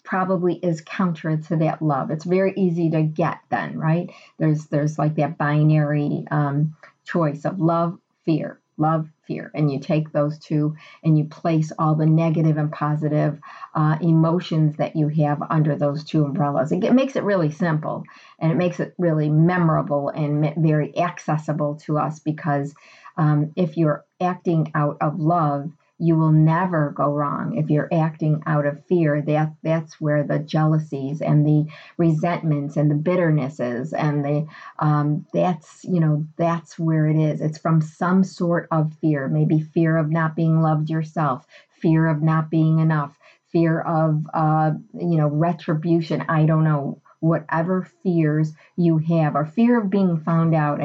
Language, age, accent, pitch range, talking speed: English, 40-59, American, 150-165 Hz, 165 wpm